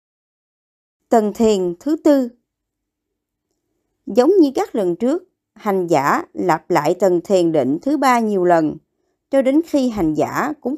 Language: Vietnamese